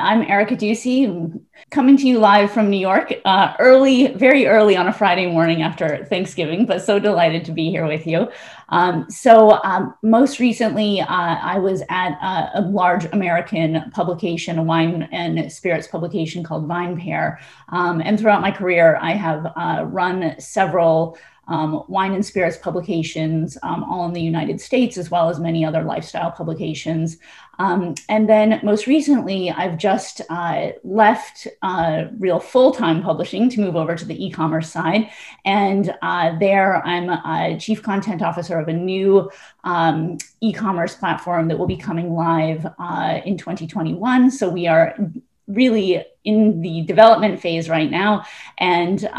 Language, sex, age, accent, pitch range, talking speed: English, female, 30-49, American, 165-210 Hz, 160 wpm